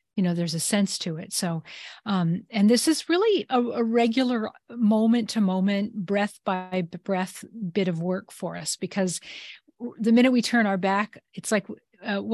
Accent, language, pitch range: American, English, 190-230 Hz